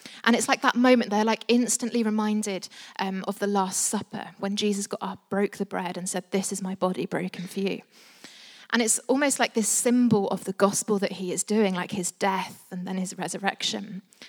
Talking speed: 210 wpm